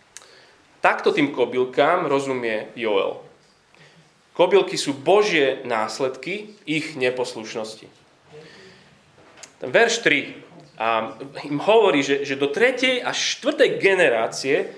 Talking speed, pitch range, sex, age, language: 95 wpm, 145-210 Hz, male, 30-49, Slovak